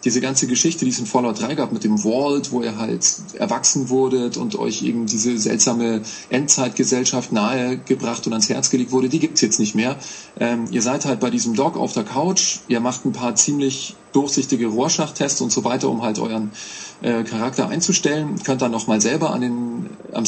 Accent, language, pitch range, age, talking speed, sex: German, German, 120-145 Hz, 20-39, 205 wpm, male